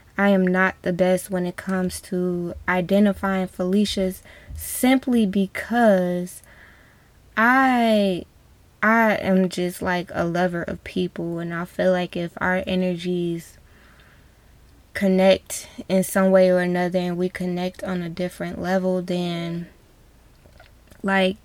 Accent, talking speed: American, 125 wpm